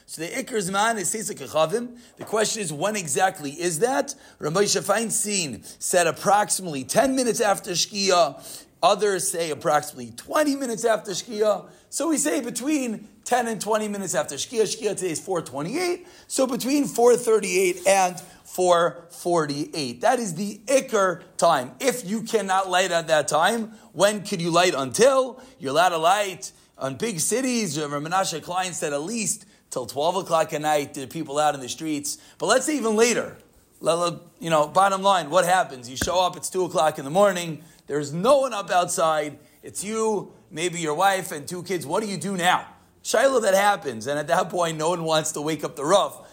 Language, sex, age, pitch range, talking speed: English, male, 30-49, 165-225 Hz, 190 wpm